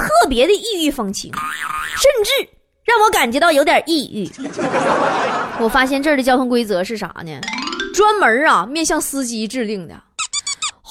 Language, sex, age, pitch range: Chinese, female, 20-39, 230-390 Hz